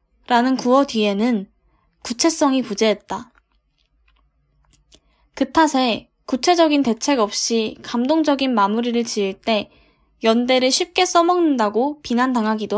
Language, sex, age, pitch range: Korean, female, 10-29, 215-280 Hz